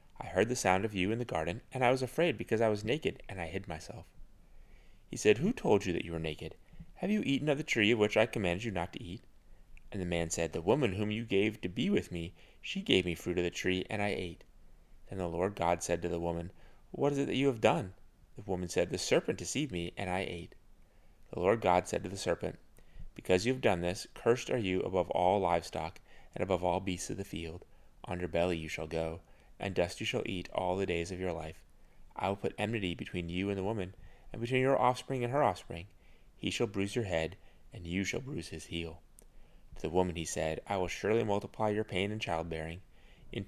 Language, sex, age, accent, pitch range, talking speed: English, male, 30-49, American, 85-110 Hz, 240 wpm